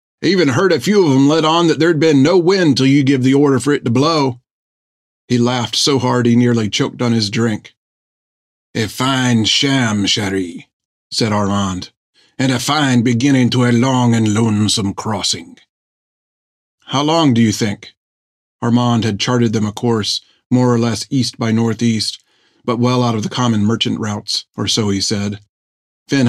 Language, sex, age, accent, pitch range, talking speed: English, male, 40-59, American, 105-130 Hz, 180 wpm